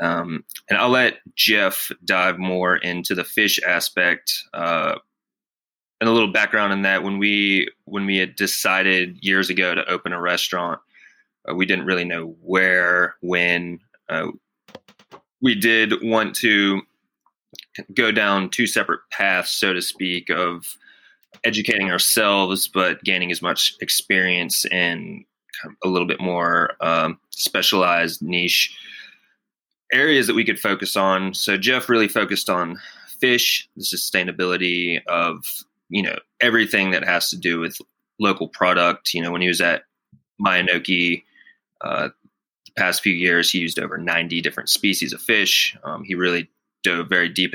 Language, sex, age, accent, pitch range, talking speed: English, male, 20-39, American, 85-95 Hz, 150 wpm